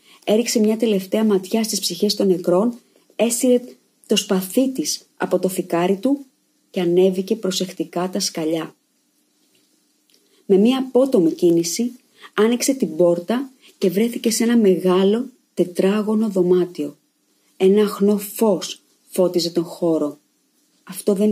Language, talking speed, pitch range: Greek, 120 wpm, 180-235 Hz